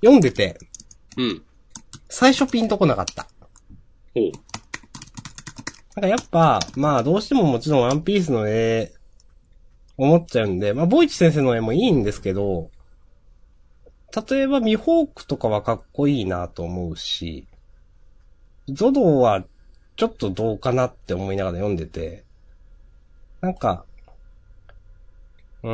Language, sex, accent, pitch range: Japanese, male, native, 90-145 Hz